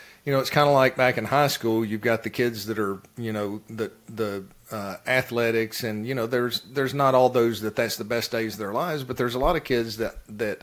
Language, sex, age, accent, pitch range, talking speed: English, male, 40-59, American, 110-130 Hz, 260 wpm